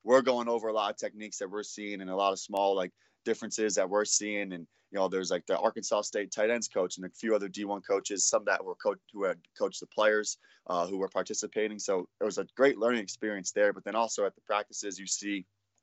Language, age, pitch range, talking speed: English, 20-39, 90-105 Hz, 255 wpm